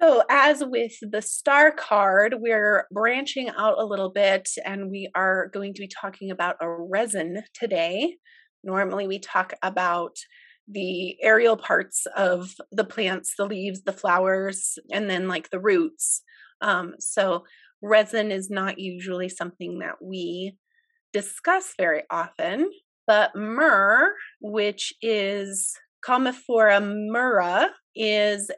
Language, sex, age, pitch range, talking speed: English, female, 30-49, 190-245 Hz, 130 wpm